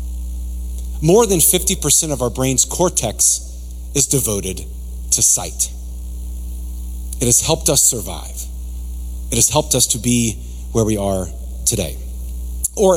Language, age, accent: English, 40-59, American